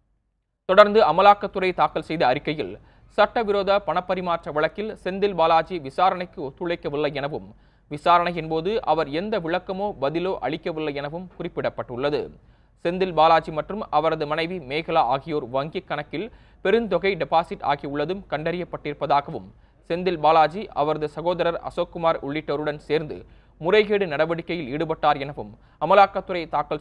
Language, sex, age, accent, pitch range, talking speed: Tamil, male, 30-49, native, 150-195 Hz, 105 wpm